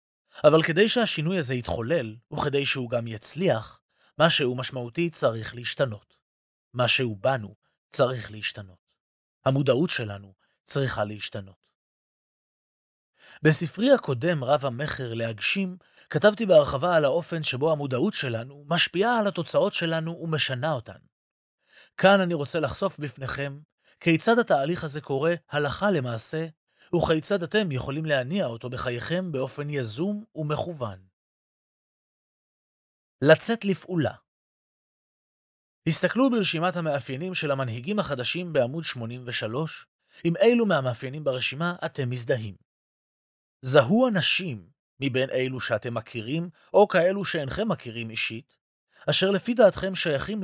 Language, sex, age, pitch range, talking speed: Hebrew, male, 30-49, 120-175 Hz, 110 wpm